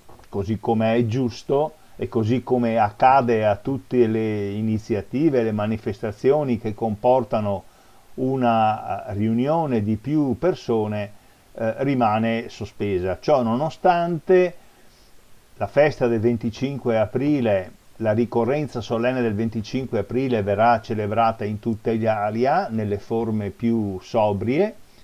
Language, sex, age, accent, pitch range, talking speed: Italian, male, 50-69, native, 110-130 Hz, 115 wpm